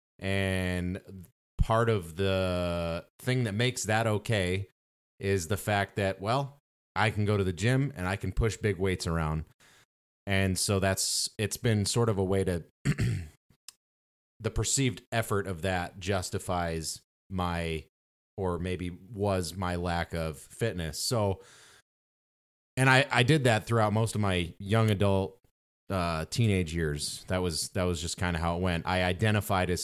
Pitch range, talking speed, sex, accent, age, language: 85-110 Hz, 160 wpm, male, American, 30-49, English